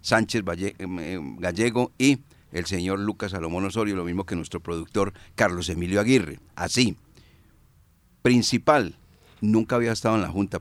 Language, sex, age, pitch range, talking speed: Spanish, male, 50-69, 85-110 Hz, 135 wpm